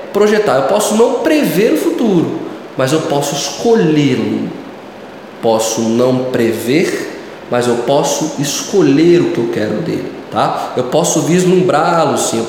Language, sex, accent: Portuguese, male, Brazilian